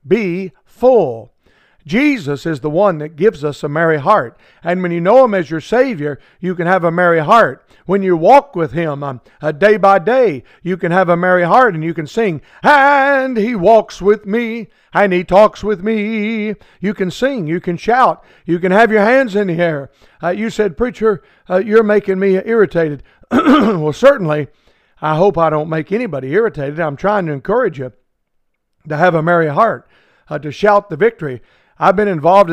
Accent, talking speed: American, 195 wpm